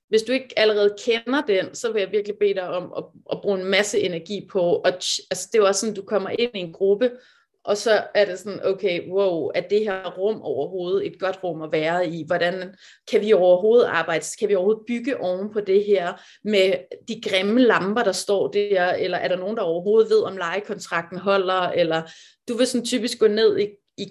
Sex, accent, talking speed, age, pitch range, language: female, native, 225 wpm, 30-49, 190-240 Hz, Danish